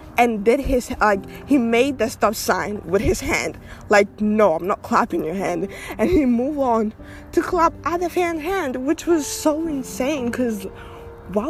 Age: 10-29